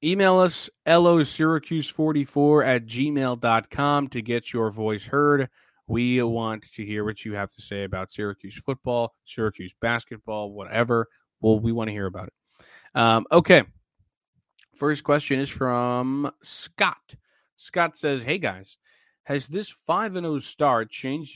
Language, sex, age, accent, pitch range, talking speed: English, male, 20-39, American, 110-145 Hz, 140 wpm